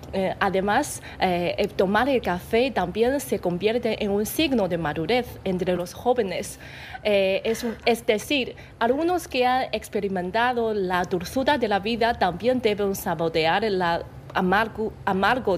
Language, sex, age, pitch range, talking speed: Spanish, female, 30-49, 180-235 Hz, 140 wpm